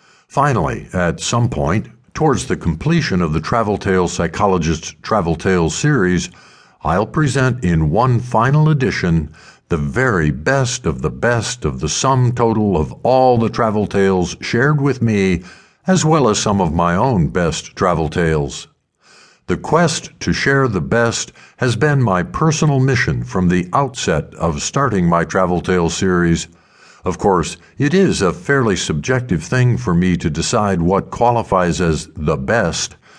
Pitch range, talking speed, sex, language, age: 85-130 Hz, 155 wpm, male, English, 60-79